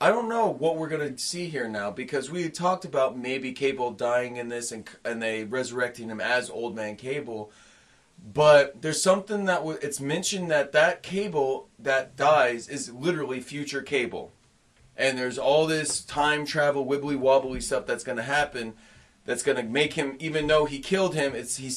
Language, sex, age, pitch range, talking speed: English, male, 30-49, 130-160 Hz, 195 wpm